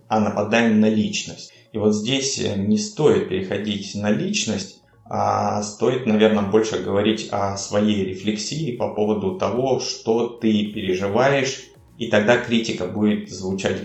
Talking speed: 135 wpm